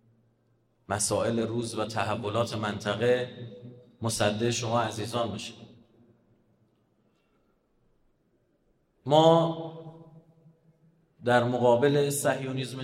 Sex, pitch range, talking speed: male, 120-150 Hz, 60 wpm